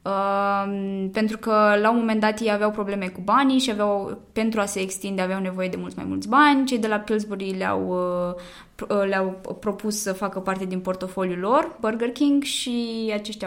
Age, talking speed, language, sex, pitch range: 20-39, 190 wpm, Romanian, female, 185-220 Hz